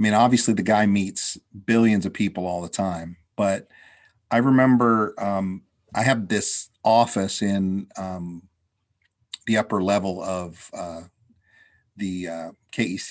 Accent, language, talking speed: American, English, 135 wpm